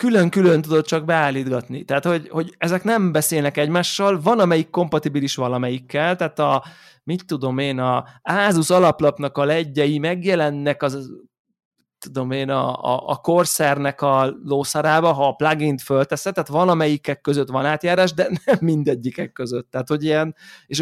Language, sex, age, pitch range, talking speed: Hungarian, male, 20-39, 135-175 Hz, 150 wpm